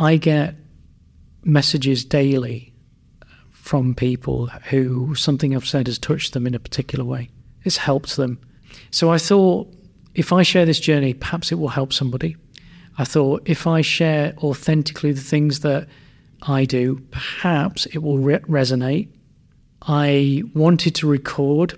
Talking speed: 145 wpm